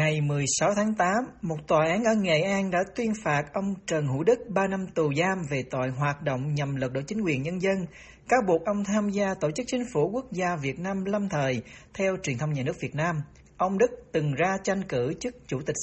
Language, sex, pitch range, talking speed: Vietnamese, male, 150-210 Hz, 240 wpm